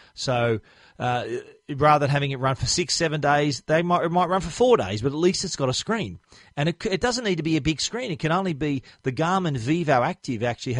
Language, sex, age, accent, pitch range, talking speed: English, male, 40-59, Australian, 120-155 Hz, 240 wpm